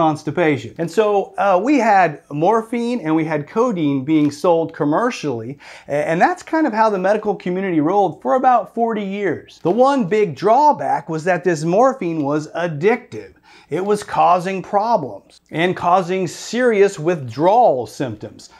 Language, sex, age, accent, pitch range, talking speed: English, male, 40-59, American, 170-230 Hz, 150 wpm